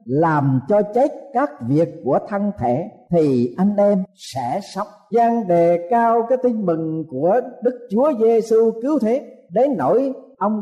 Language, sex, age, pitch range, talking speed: Vietnamese, male, 50-69, 155-230 Hz, 160 wpm